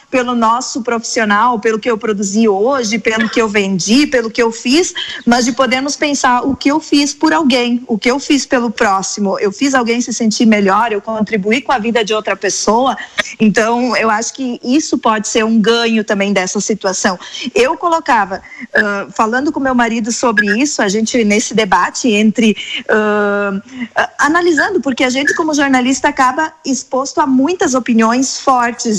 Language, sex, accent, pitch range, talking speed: Portuguese, female, Brazilian, 215-260 Hz, 170 wpm